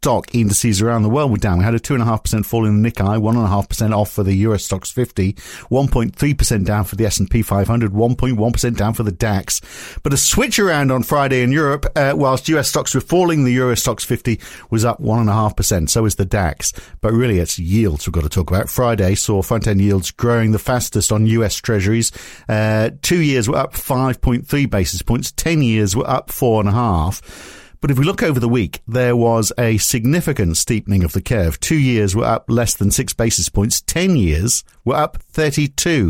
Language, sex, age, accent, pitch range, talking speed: English, male, 50-69, British, 105-130 Hz, 190 wpm